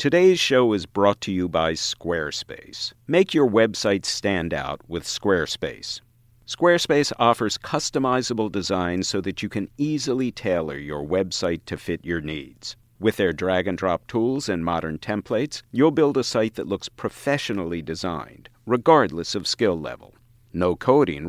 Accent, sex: American, male